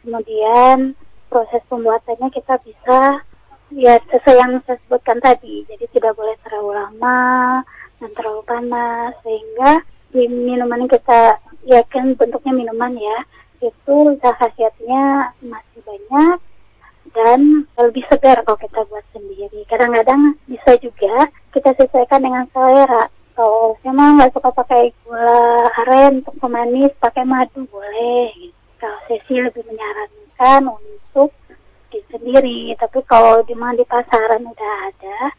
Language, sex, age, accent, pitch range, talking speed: Indonesian, male, 20-39, American, 230-265 Hz, 120 wpm